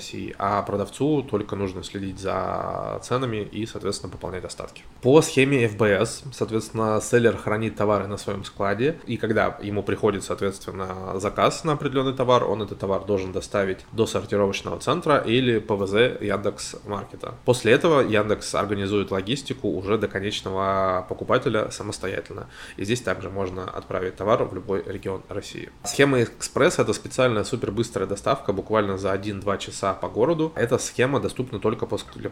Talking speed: 145 wpm